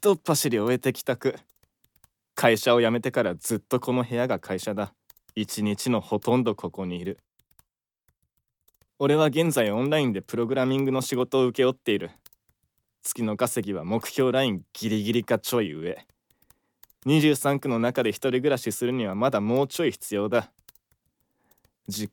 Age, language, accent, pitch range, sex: 20-39, Japanese, native, 115-155 Hz, male